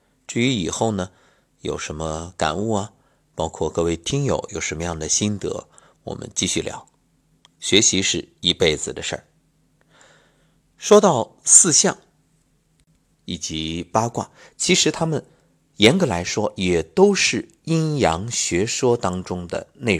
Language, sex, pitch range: Chinese, male, 85-130 Hz